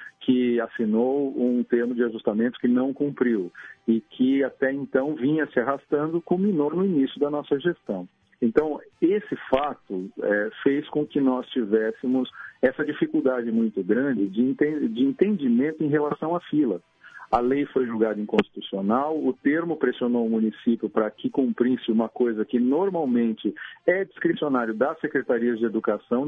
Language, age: Portuguese, 50-69